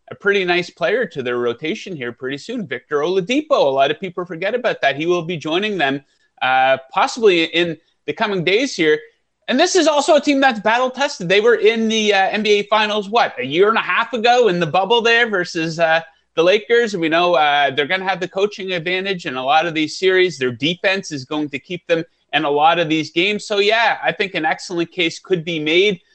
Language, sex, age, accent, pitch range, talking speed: English, male, 30-49, American, 160-210 Hz, 230 wpm